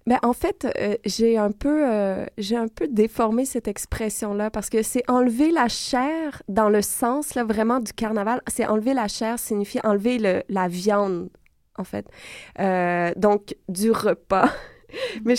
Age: 20-39